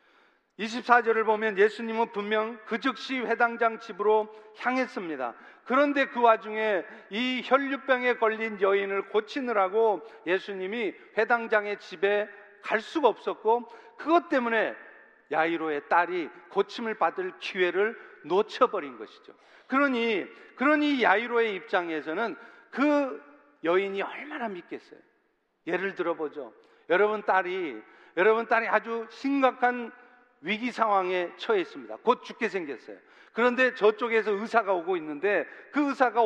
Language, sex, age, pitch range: Korean, male, 40-59, 205-275 Hz